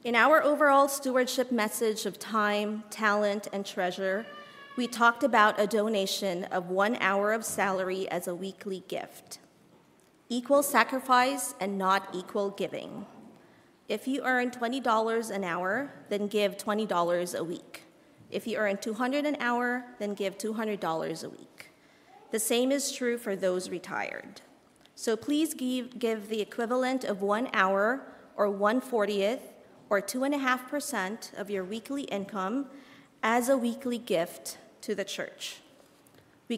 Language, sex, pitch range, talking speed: English, female, 200-250 Hz, 140 wpm